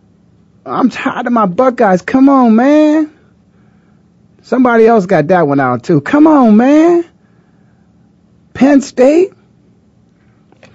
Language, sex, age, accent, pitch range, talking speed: English, male, 30-49, American, 175-265 Hz, 110 wpm